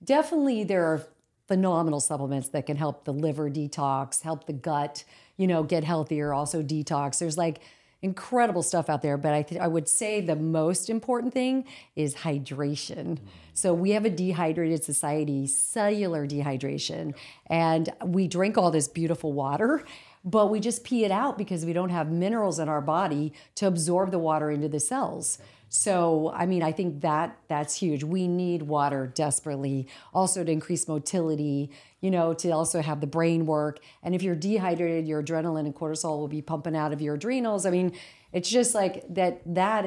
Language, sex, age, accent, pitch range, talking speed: English, female, 50-69, American, 150-185 Hz, 180 wpm